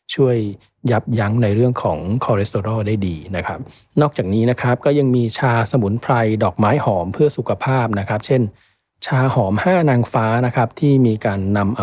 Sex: male